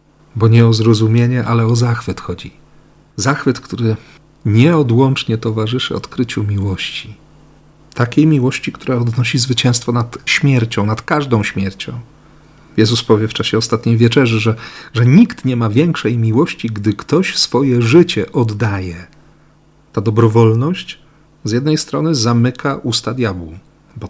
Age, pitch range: 40-59, 110-140 Hz